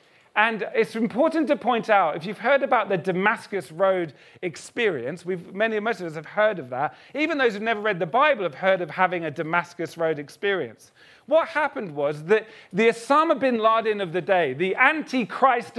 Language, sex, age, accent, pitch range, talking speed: English, male, 40-59, British, 185-255 Hz, 185 wpm